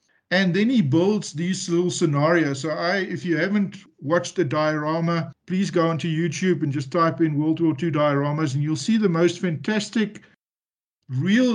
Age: 50-69